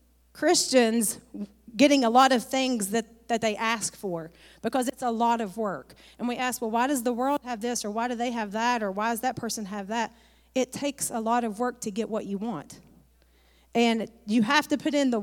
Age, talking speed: 30-49, 230 wpm